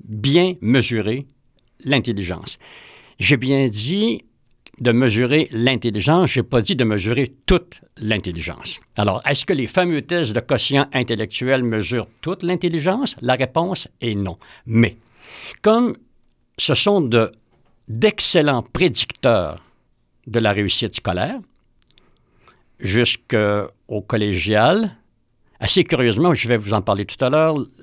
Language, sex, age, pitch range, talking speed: French, male, 60-79, 110-155 Hz, 120 wpm